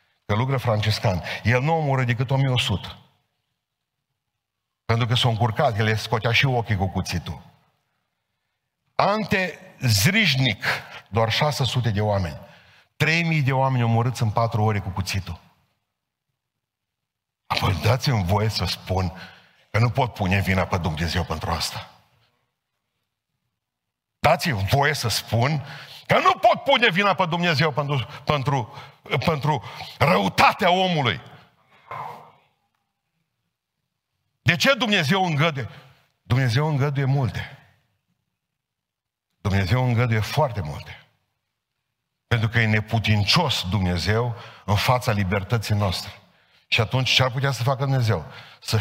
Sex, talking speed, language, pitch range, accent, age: male, 110 wpm, Romanian, 105-140 Hz, native, 50-69